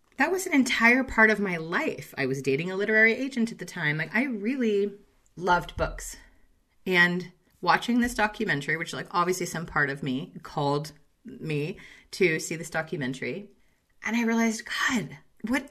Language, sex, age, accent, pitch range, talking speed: English, female, 30-49, American, 175-225 Hz, 170 wpm